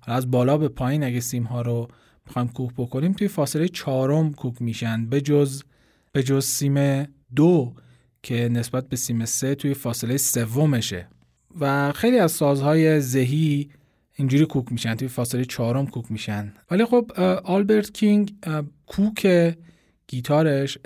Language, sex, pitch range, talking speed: Persian, male, 125-150 Hz, 145 wpm